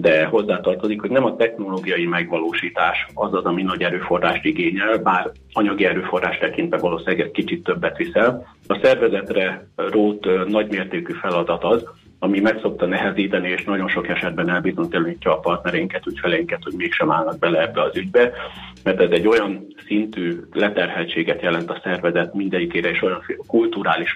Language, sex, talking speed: Hungarian, male, 145 wpm